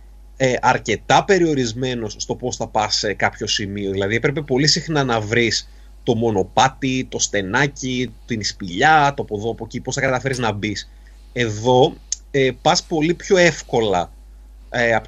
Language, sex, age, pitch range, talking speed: Greek, male, 30-49, 95-140 Hz, 145 wpm